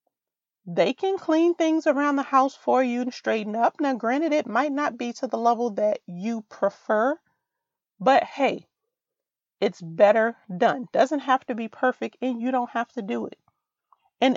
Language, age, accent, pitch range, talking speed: English, 30-49, American, 220-275 Hz, 175 wpm